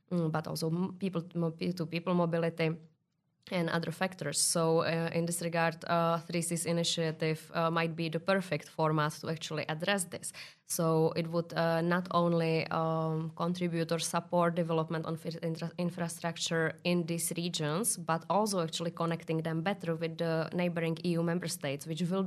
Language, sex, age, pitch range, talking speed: Hungarian, female, 20-39, 160-175 Hz, 155 wpm